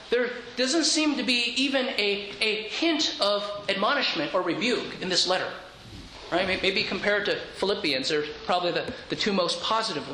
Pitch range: 195-250 Hz